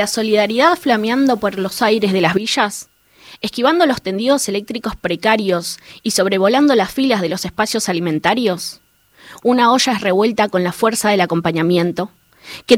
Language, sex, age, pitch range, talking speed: Spanish, female, 20-39, 190-260 Hz, 150 wpm